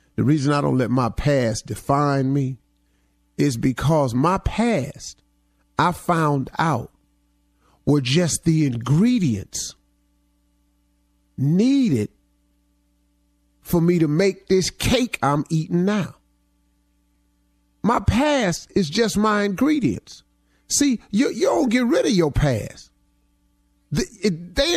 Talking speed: 115 wpm